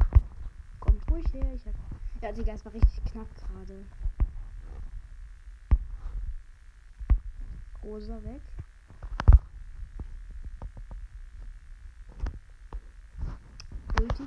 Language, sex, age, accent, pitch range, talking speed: German, female, 20-39, German, 70-90 Hz, 50 wpm